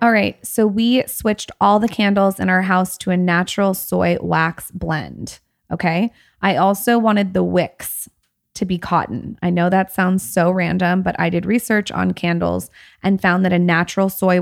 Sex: female